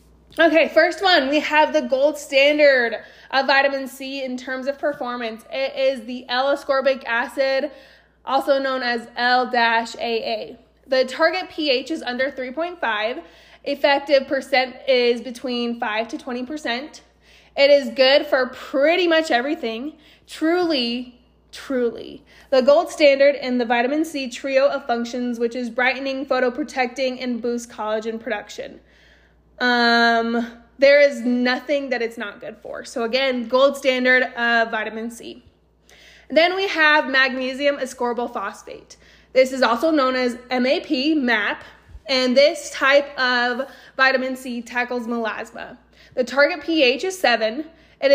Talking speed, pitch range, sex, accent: 135 wpm, 245-285 Hz, female, American